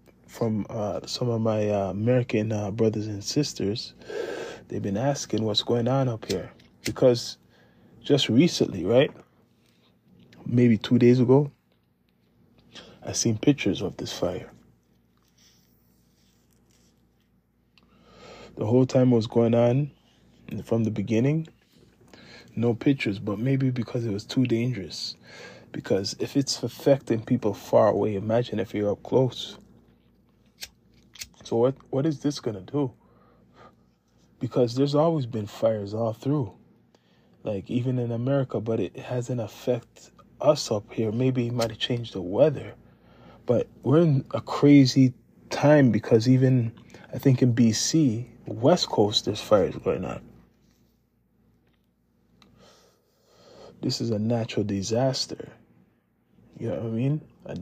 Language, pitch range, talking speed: English, 105-130 Hz, 130 wpm